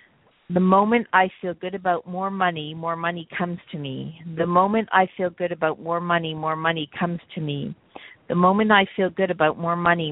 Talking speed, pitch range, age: 200 wpm, 160-185 Hz, 50-69